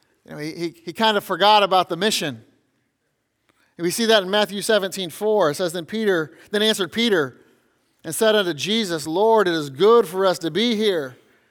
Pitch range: 180-230 Hz